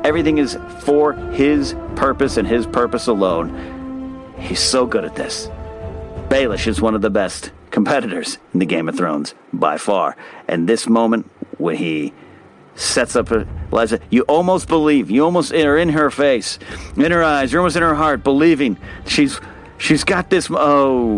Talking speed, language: 165 wpm, English